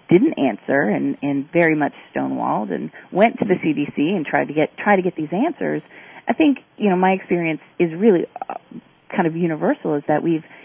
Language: English